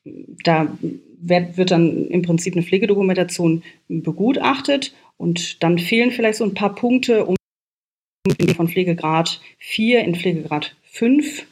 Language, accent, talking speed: German, German, 125 wpm